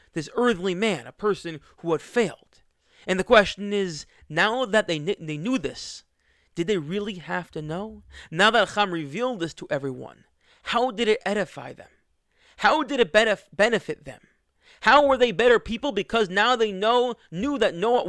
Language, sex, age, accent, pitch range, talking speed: English, male, 30-49, American, 155-220 Hz, 180 wpm